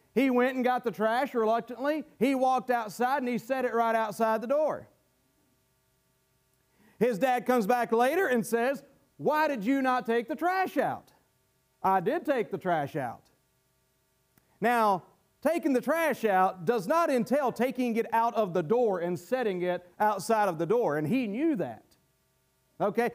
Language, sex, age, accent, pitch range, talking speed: English, male, 40-59, American, 220-265 Hz, 170 wpm